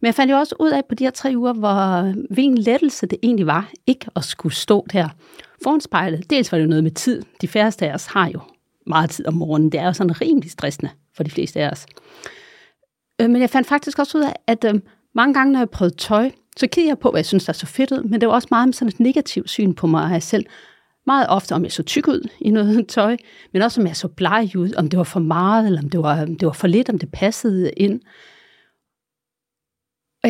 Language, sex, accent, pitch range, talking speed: Danish, female, native, 175-250 Hz, 255 wpm